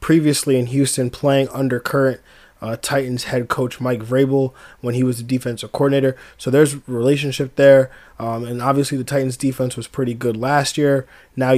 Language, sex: English, male